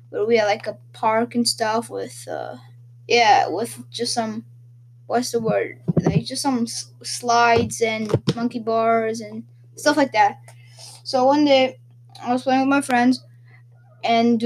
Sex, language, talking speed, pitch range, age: female, English, 160 wpm, 220-265 Hz, 10-29